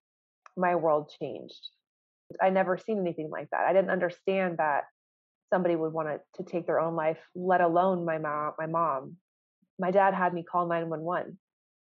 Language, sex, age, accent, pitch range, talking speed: English, female, 20-39, American, 160-185 Hz, 175 wpm